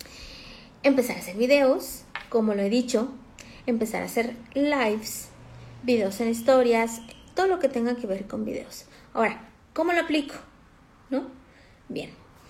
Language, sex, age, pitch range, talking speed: Spanish, female, 30-49, 205-265 Hz, 140 wpm